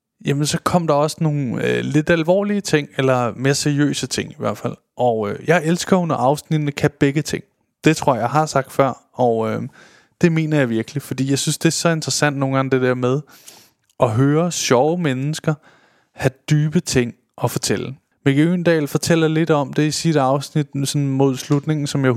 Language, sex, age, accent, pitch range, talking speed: Danish, male, 20-39, native, 125-150 Hz, 200 wpm